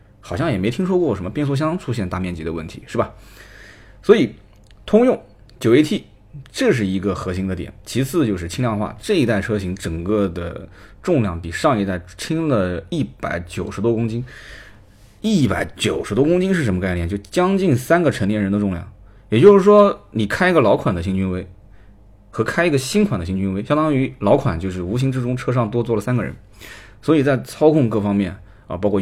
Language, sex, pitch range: Chinese, male, 95-125 Hz